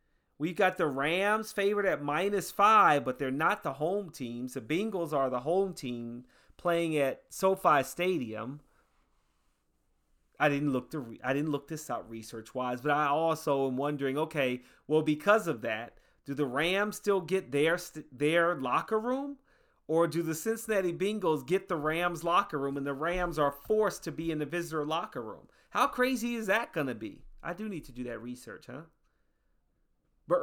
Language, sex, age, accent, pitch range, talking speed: English, male, 30-49, American, 140-195 Hz, 185 wpm